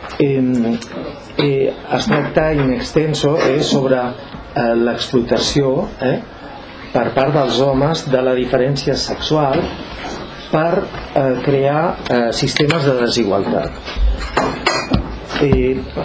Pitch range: 120-145 Hz